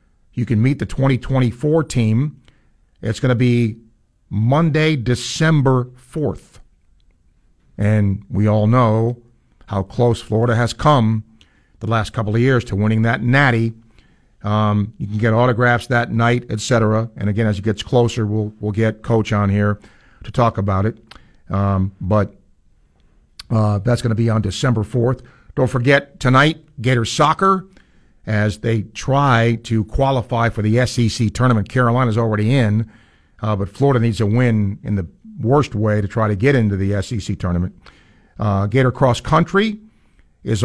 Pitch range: 105-130 Hz